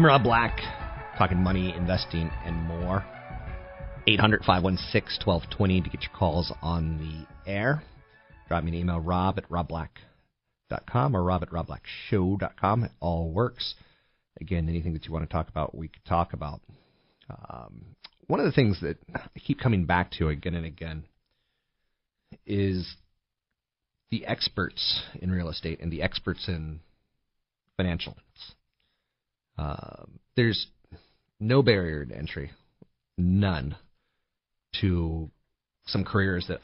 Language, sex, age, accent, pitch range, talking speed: English, male, 40-59, American, 80-95 Hz, 135 wpm